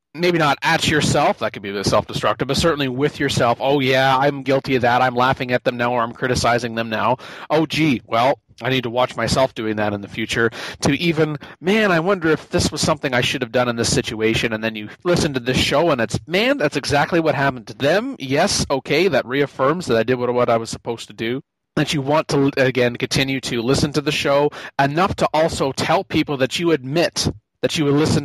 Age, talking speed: 30-49, 235 wpm